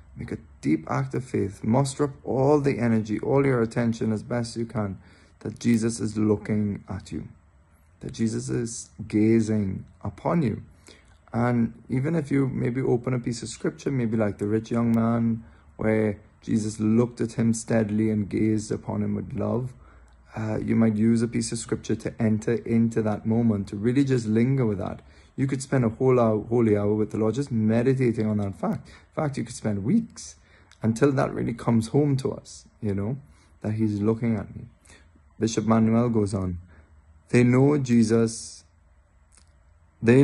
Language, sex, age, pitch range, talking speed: English, male, 20-39, 105-120 Hz, 180 wpm